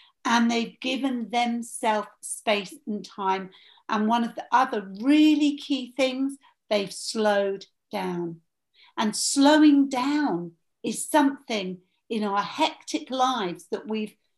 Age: 50-69